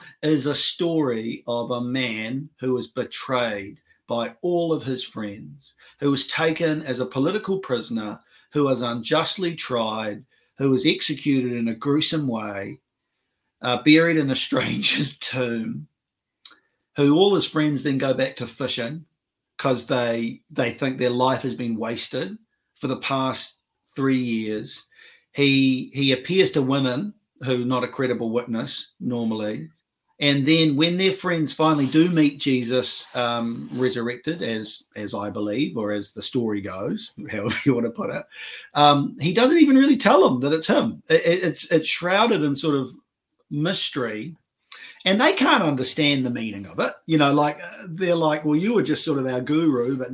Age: 50-69